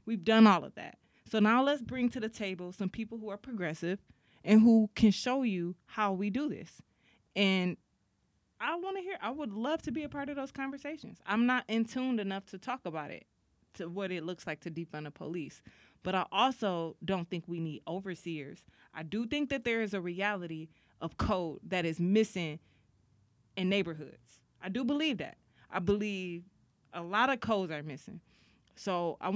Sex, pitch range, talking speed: female, 170-215 Hz, 195 wpm